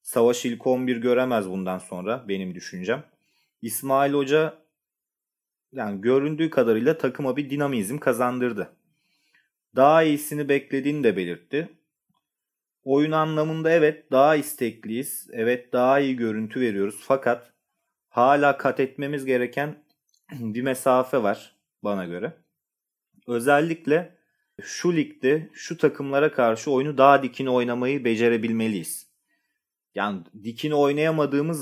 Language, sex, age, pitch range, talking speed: Turkish, male, 30-49, 120-150 Hz, 105 wpm